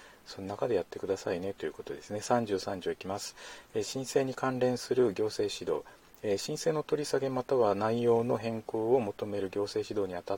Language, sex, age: Japanese, male, 40-59